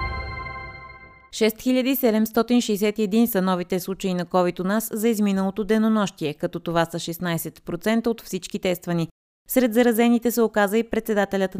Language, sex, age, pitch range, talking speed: Bulgarian, female, 20-39, 170-210 Hz, 125 wpm